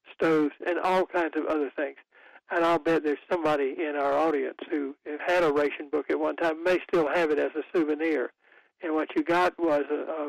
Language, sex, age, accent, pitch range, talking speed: English, male, 60-79, American, 150-185 Hz, 210 wpm